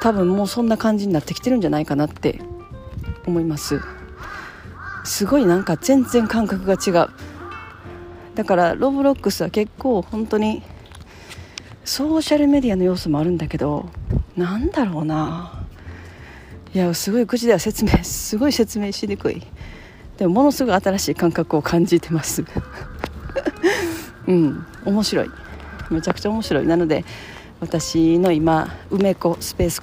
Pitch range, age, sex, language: 155-220 Hz, 40-59, female, Japanese